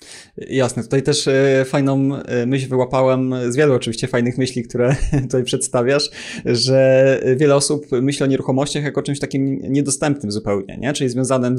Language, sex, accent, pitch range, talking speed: Polish, male, native, 125-140 Hz, 145 wpm